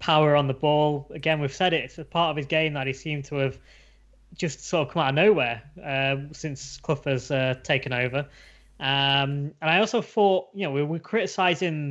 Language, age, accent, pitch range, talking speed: English, 10-29, British, 135-155 Hz, 215 wpm